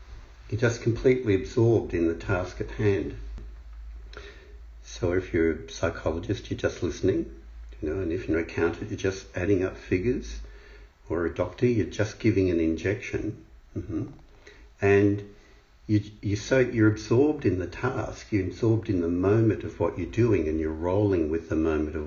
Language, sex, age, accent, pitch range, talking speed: English, male, 60-79, Australian, 75-105 Hz, 175 wpm